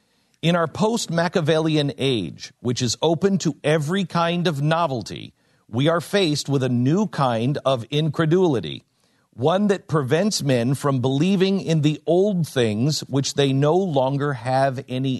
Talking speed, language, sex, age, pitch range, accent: 145 wpm, English, male, 50-69, 120-175 Hz, American